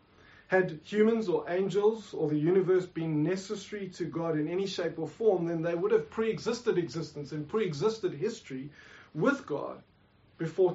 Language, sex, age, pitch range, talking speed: English, male, 30-49, 155-200 Hz, 155 wpm